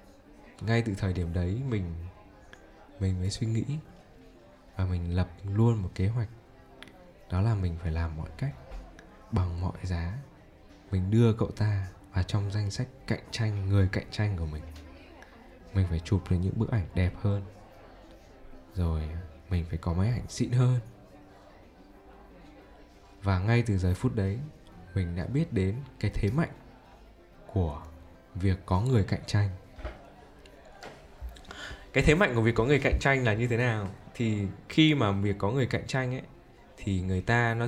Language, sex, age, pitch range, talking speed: Vietnamese, male, 20-39, 90-115 Hz, 165 wpm